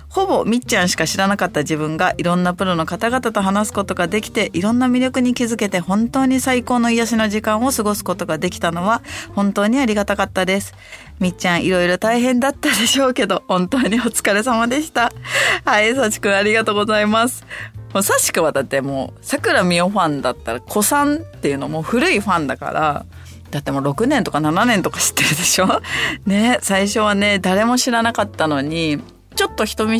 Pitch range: 170-235 Hz